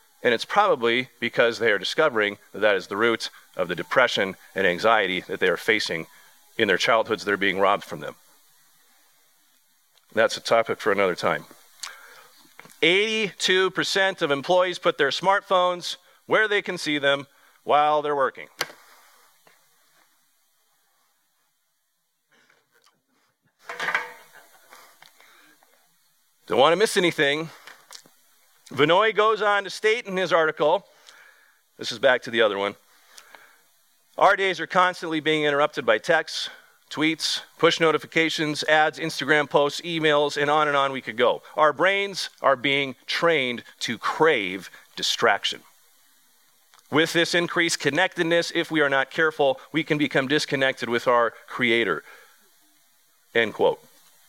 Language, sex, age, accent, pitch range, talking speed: English, male, 40-59, American, 140-180 Hz, 130 wpm